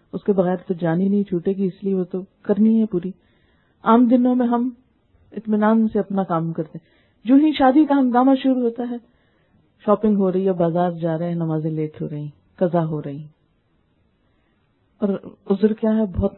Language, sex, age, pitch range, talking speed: Urdu, female, 40-59, 175-210 Hz, 190 wpm